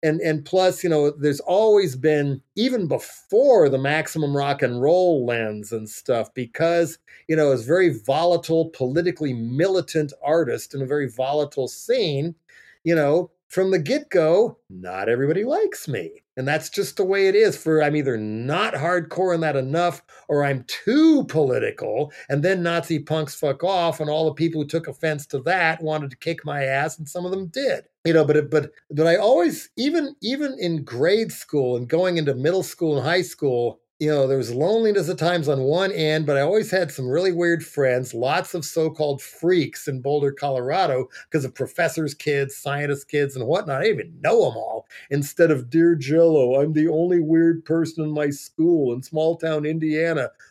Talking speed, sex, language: 190 wpm, male, English